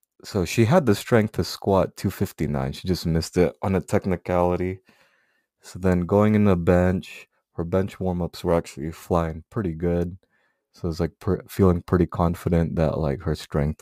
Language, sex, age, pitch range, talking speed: English, male, 20-39, 80-95 Hz, 175 wpm